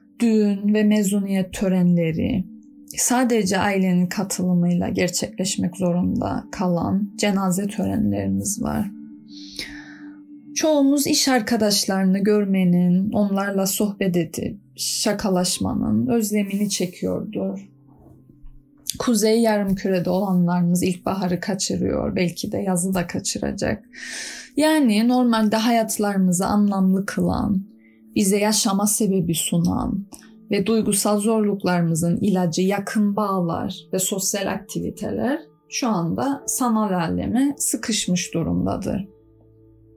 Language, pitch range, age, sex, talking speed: Turkish, 175-225 Hz, 10-29, female, 85 wpm